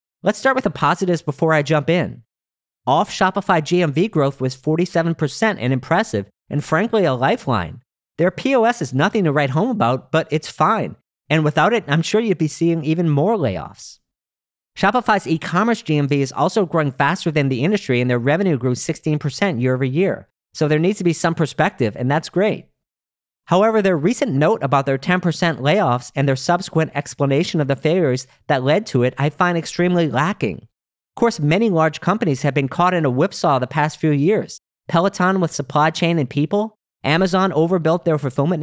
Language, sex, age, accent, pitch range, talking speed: English, male, 40-59, American, 145-185 Hz, 185 wpm